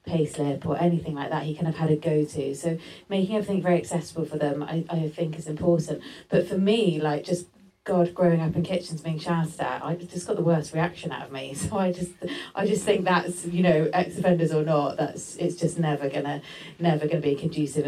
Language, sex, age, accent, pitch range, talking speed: English, female, 30-49, British, 150-170 Hz, 225 wpm